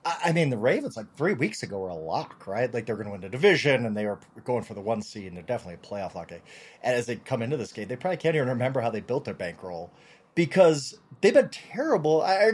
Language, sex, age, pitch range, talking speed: English, male, 30-49, 110-160 Hz, 275 wpm